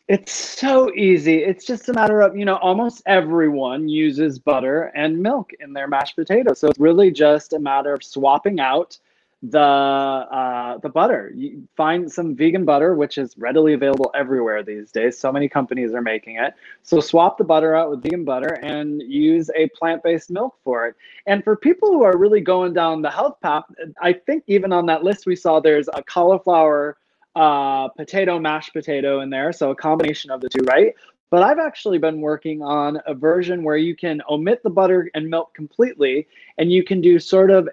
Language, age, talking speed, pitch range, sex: English, 20-39, 195 wpm, 145-200 Hz, male